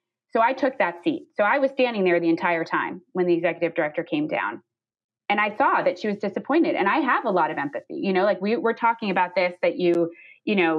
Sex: female